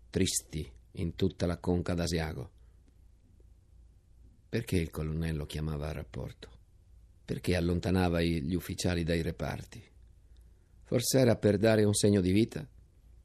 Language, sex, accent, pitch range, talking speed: Italian, male, native, 85-100 Hz, 120 wpm